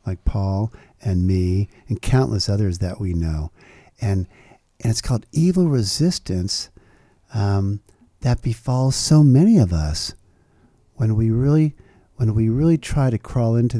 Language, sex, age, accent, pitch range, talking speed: English, male, 50-69, American, 95-120 Hz, 145 wpm